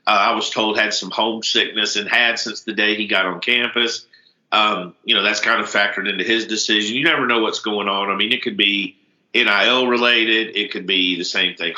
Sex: male